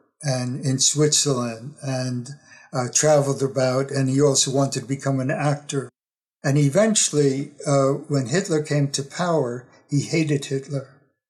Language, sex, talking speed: English, male, 140 wpm